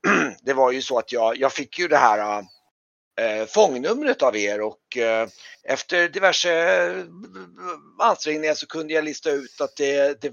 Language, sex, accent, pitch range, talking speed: Swedish, male, native, 115-155 Hz, 150 wpm